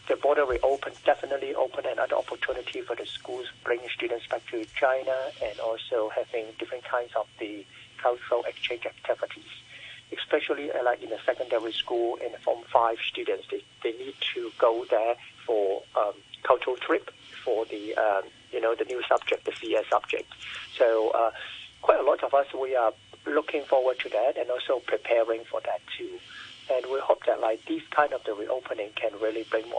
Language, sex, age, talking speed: English, male, 50-69, 185 wpm